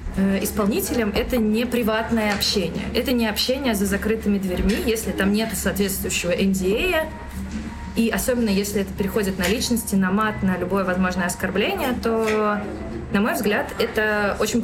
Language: Russian